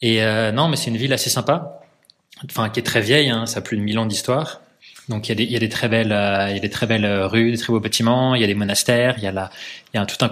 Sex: male